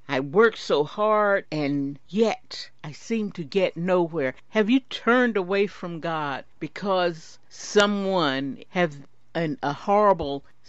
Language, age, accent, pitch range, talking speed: English, 60-79, American, 140-195 Hz, 125 wpm